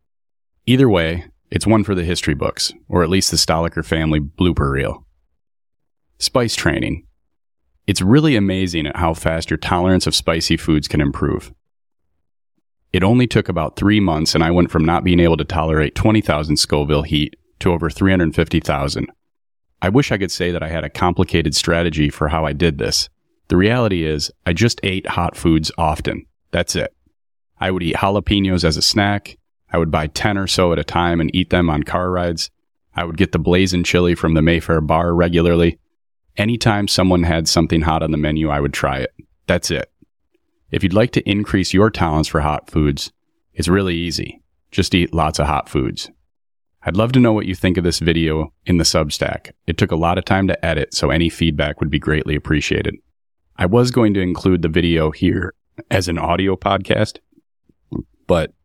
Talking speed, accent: 190 wpm, American